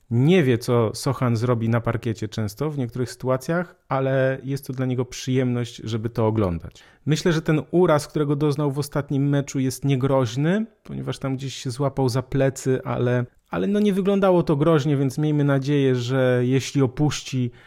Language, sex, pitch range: Polish, male, 115-140 Hz